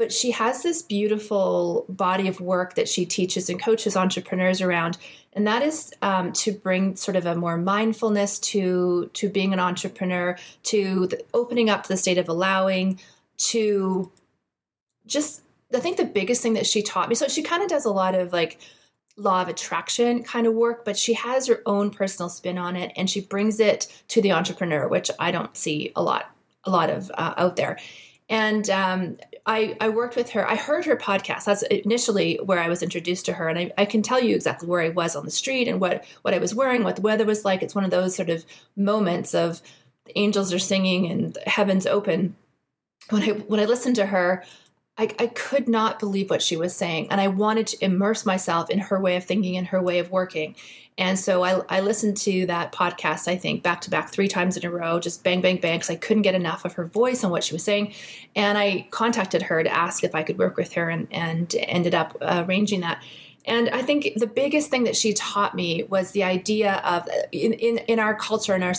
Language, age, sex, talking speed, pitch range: English, 30-49, female, 225 wpm, 180-215 Hz